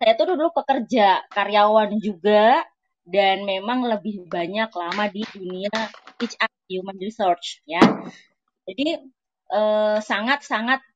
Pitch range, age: 190-240 Hz, 20-39